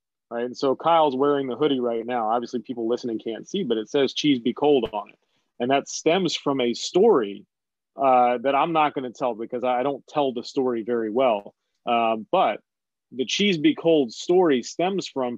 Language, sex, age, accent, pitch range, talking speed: English, male, 30-49, American, 120-150 Hz, 205 wpm